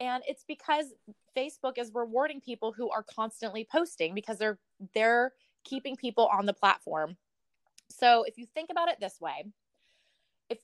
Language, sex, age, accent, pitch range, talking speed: English, female, 20-39, American, 190-250 Hz, 160 wpm